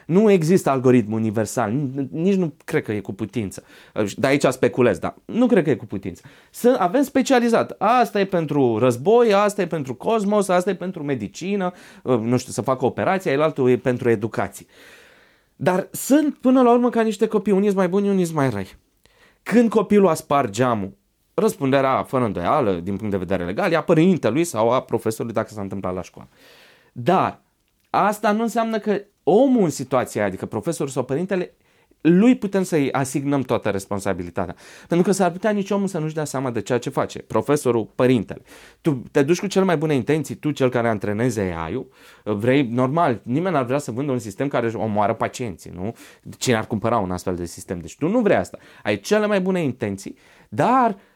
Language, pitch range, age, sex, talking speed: Romanian, 115-195 Hz, 20-39, male, 195 wpm